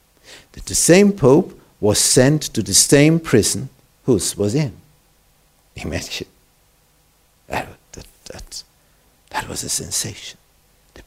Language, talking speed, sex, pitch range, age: Romanian, 110 wpm, male, 90-125 Hz, 60-79